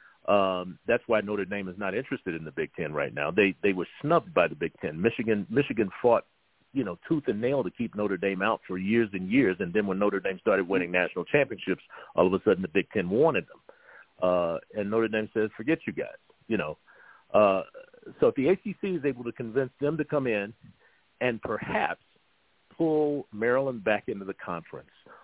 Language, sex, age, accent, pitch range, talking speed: English, male, 50-69, American, 100-135 Hz, 215 wpm